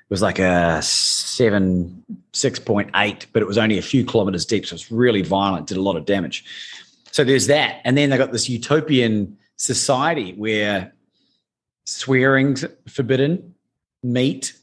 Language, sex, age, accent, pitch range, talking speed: English, male, 30-49, Australian, 105-135 Hz, 160 wpm